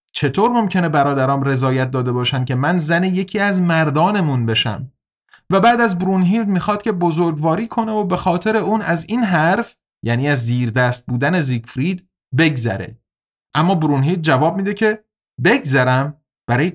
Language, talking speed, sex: Persian, 150 wpm, male